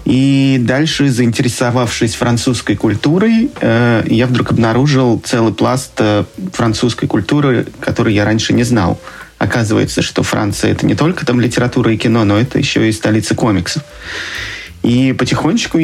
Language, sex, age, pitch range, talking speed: Russian, male, 20-39, 105-130 Hz, 135 wpm